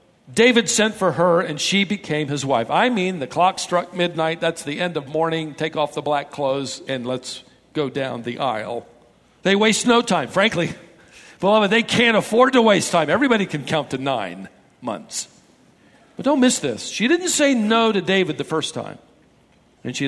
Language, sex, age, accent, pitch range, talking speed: English, male, 50-69, American, 145-235 Hz, 190 wpm